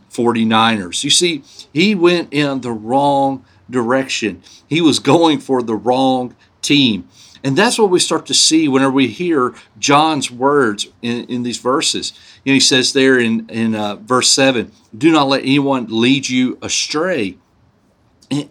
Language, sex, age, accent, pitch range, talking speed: English, male, 50-69, American, 120-150 Hz, 160 wpm